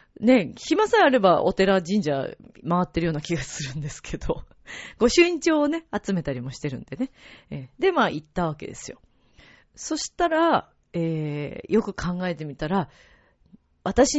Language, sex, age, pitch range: Japanese, female, 40-59, 160-265 Hz